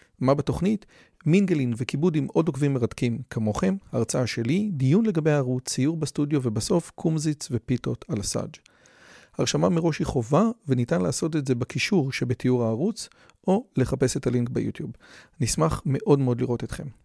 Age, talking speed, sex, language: 40-59, 150 wpm, male, Hebrew